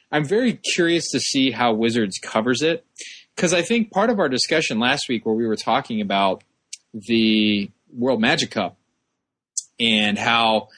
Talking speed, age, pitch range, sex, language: 160 wpm, 20-39, 110-145 Hz, male, English